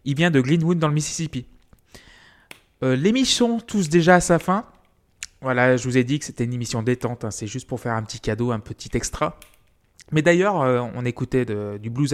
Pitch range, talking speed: 110-150 Hz, 215 wpm